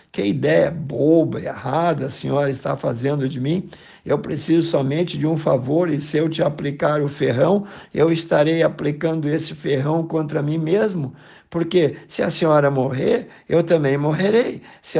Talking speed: 165 wpm